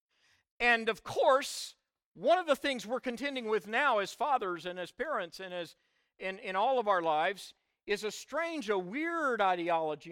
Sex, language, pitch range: male, English, 185-240 Hz